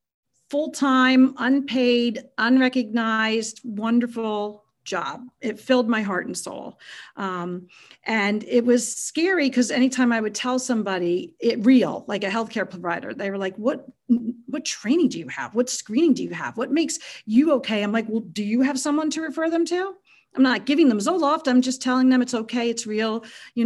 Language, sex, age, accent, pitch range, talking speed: English, female, 40-59, American, 205-255 Hz, 180 wpm